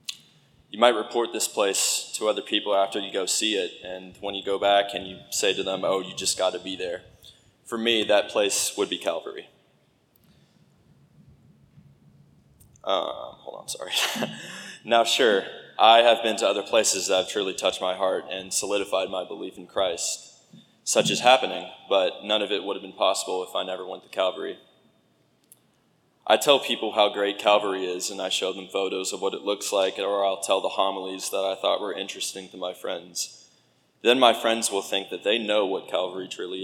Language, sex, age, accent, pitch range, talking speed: English, male, 20-39, American, 95-115 Hz, 195 wpm